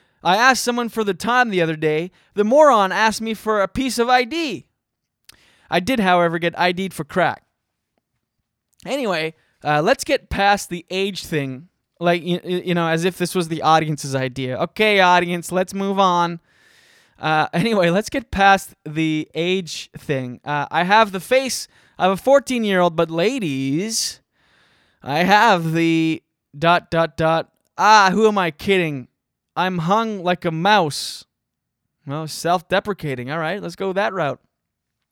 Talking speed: 155 wpm